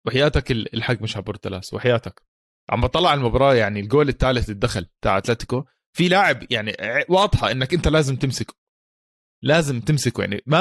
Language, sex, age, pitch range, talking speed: Arabic, male, 20-39, 120-170 Hz, 155 wpm